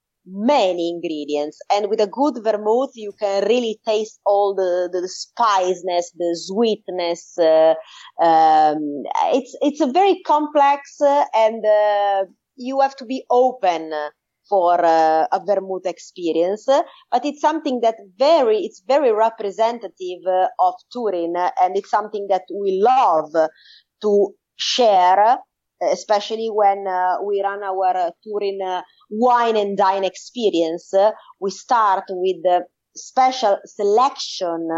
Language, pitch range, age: English, 180-245 Hz, 30-49